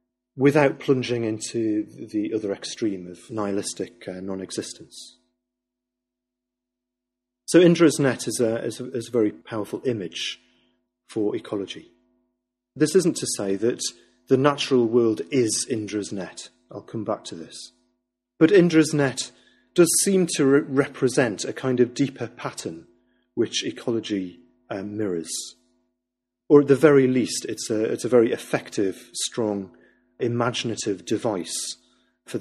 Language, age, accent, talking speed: English, 40-59, British, 125 wpm